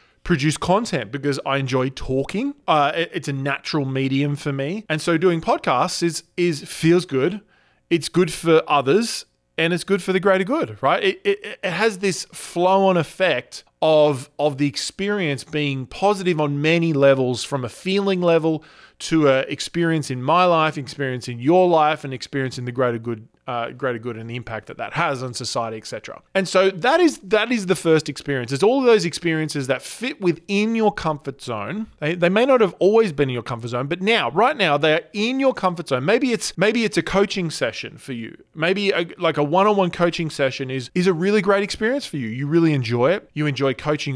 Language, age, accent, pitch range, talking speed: English, 20-39, Australian, 140-195 Hz, 210 wpm